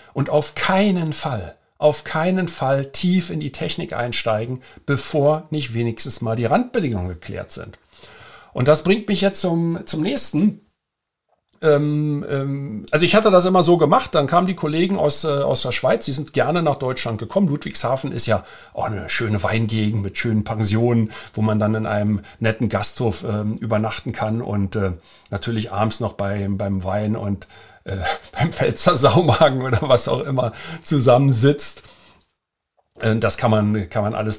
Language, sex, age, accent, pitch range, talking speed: German, male, 50-69, German, 110-150 Hz, 165 wpm